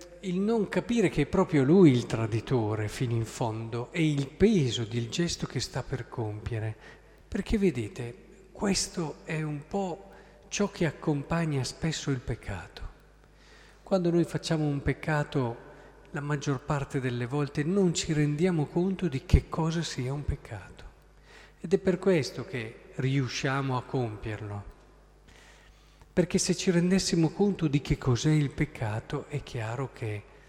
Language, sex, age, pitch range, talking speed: Italian, male, 50-69, 130-170 Hz, 145 wpm